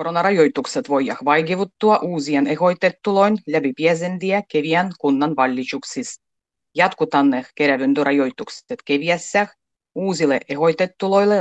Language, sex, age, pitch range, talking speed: Finnish, female, 30-49, 140-200 Hz, 75 wpm